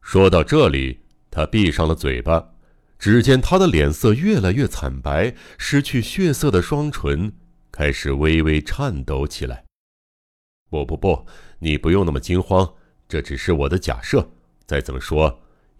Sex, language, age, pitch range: male, Chinese, 60-79, 70-110 Hz